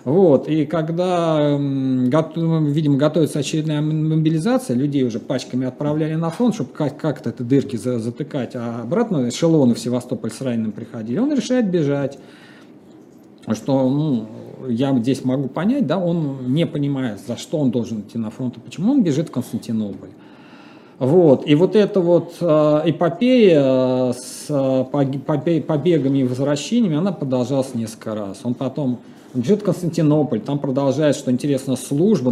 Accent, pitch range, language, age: native, 125-160 Hz, Russian, 40-59